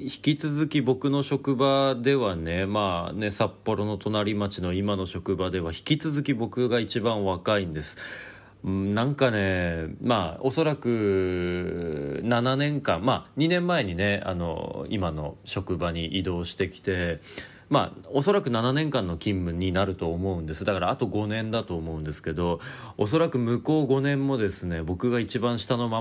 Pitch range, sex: 90-130 Hz, male